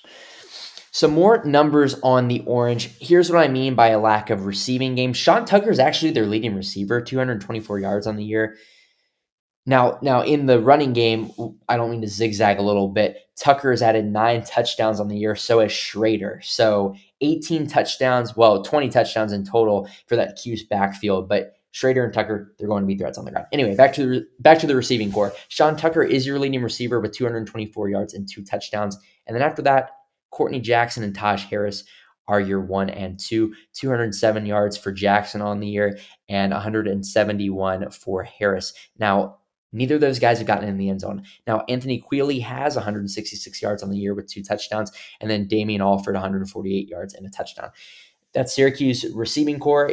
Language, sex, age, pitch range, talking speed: English, male, 20-39, 105-130 Hz, 190 wpm